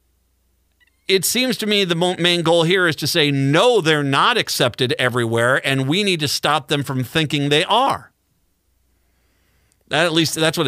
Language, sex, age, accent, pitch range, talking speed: English, male, 50-69, American, 125-165 Hz, 170 wpm